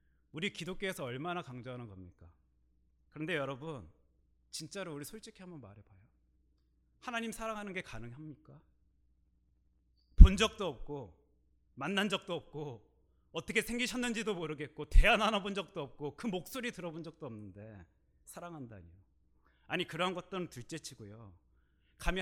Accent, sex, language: native, male, Korean